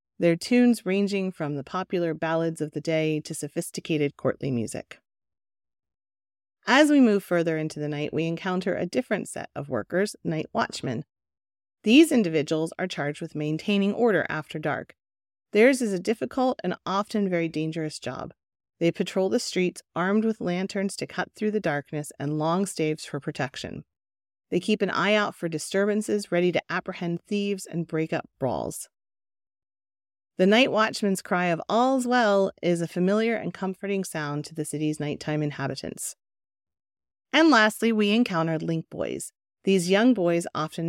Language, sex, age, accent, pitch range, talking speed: English, female, 40-59, American, 150-200 Hz, 160 wpm